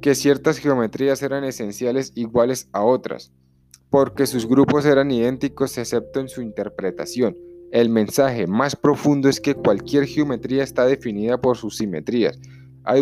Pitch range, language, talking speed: 110-135 Hz, Spanish, 145 wpm